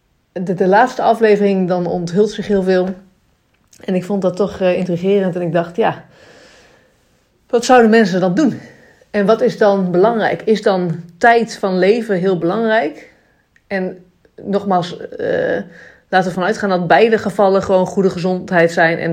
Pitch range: 175-210 Hz